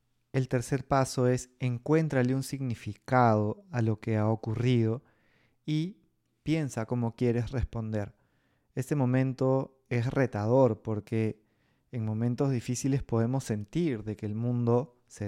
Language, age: Spanish, 20-39